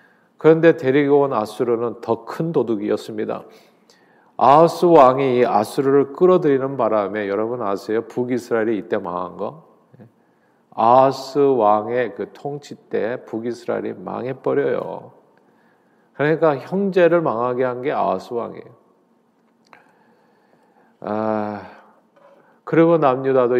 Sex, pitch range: male, 115-145 Hz